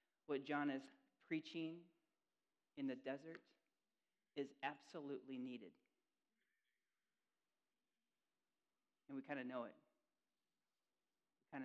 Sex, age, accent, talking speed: male, 40-59, American, 90 wpm